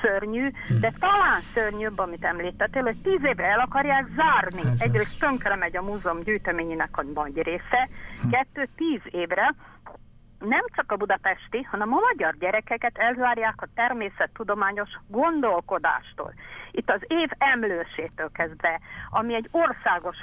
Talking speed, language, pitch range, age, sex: 130 wpm, Hungarian, 185-250 Hz, 50-69, female